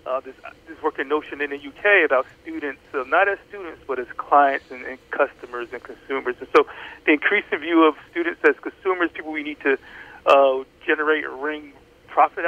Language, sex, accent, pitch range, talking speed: English, male, American, 135-165 Hz, 190 wpm